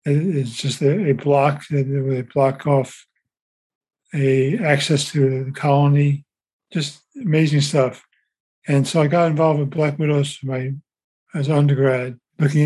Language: English